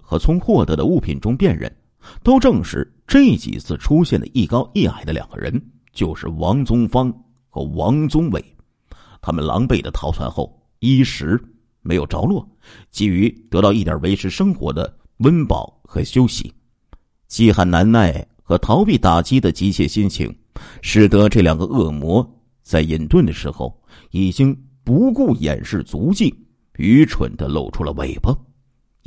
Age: 50-69